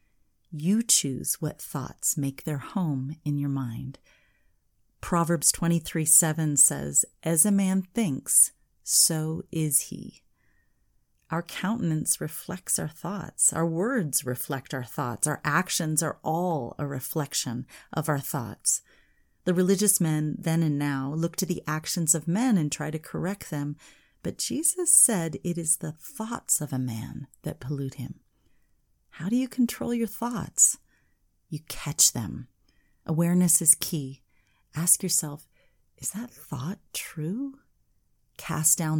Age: 40-59